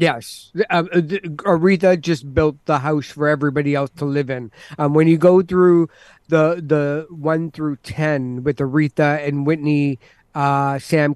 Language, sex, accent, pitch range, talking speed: English, male, American, 140-160 Hz, 160 wpm